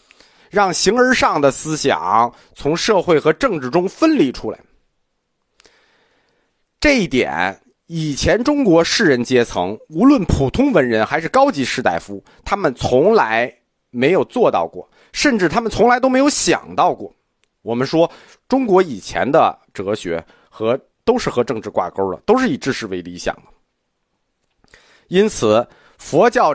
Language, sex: Chinese, male